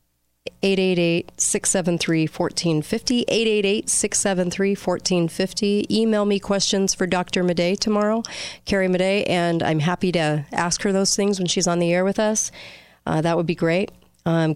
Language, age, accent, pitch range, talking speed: English, 40-59, American, 155-180 Hz, 130 wpm